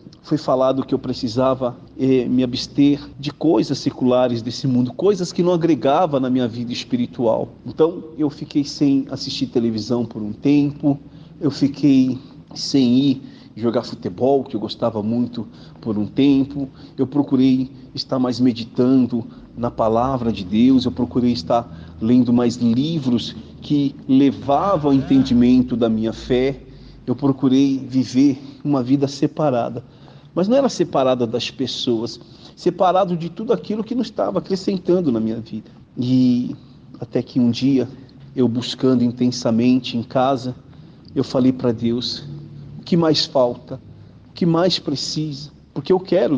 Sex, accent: male, Brazilian